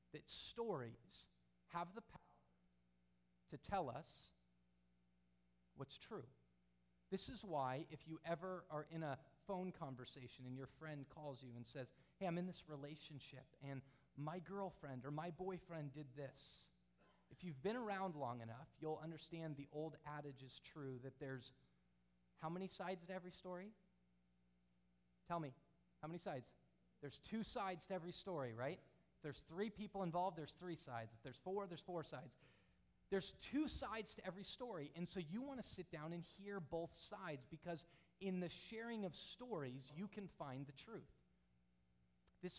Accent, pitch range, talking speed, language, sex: American, 130-185 Hz, 165 wpm, English, male